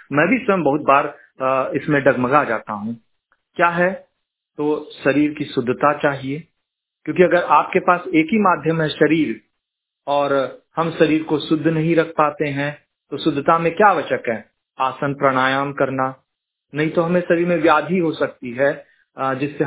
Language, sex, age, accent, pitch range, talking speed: Hindi, male, 40-59, native, 140-180 Hz, 160 wpm